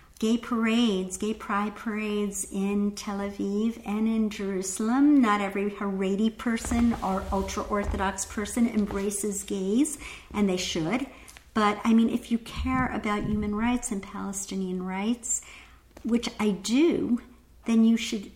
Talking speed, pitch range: 135 wpm, 185-220 Hz